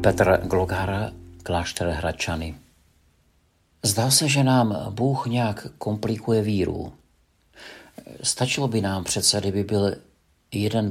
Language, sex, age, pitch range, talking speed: Czech, male, 50-69, 80-110 Hz, 105 wpm